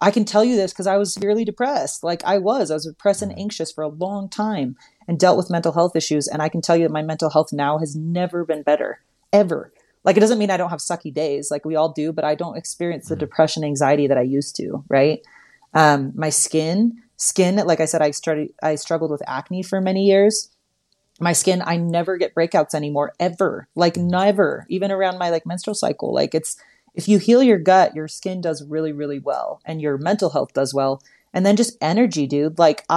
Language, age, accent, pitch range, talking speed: English, 30-49, American, 155-200 Hz, 230 wpm